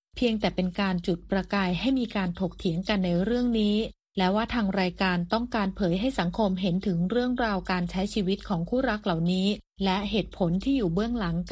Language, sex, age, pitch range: Thai, female, 30-49, 185-225 Hz